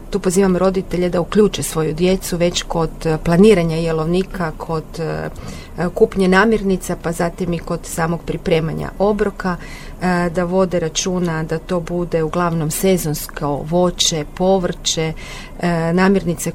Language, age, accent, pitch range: Croatian, 30-49, native, 165-190 Hz